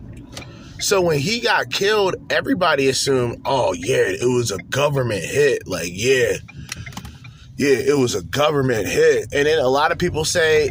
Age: 20-39